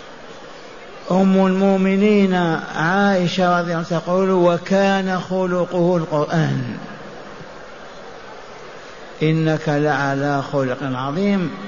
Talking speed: 65 wpm